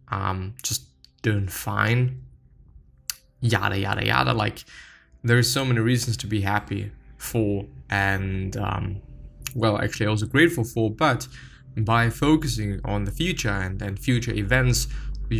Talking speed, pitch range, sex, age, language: 135 wpm, 105-130 Hz, male, 10-29, English